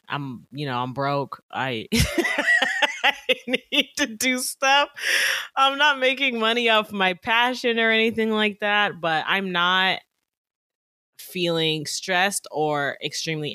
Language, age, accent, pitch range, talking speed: English, 20-39, American, 130-205 Hz, 130 wpm